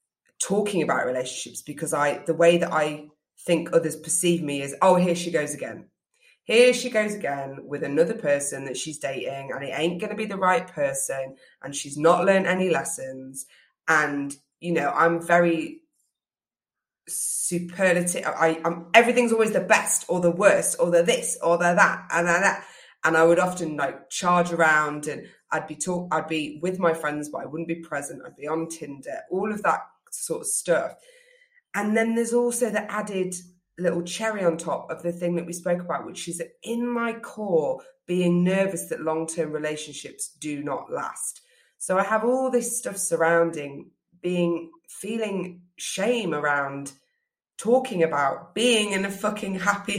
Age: 20-39